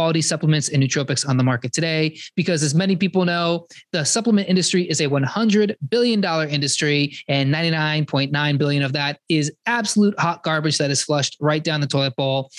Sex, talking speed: male, 180 wpm